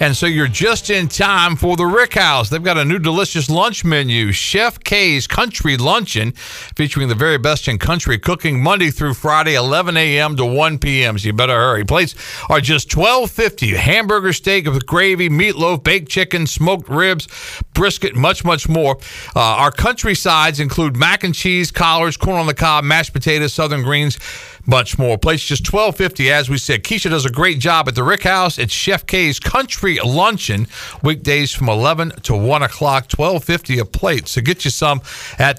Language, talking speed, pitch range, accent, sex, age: English, 190 wpm, 135-185 Hz, American, male, 50-69